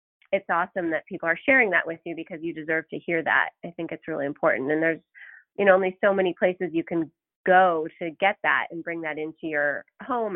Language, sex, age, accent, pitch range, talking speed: English, female, 30-49, American, 165-210 Hz, 230 wpm